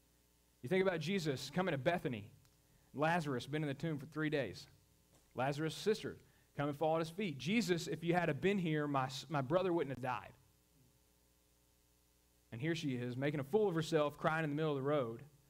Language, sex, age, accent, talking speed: English, male, 40-59, American, 200 wpm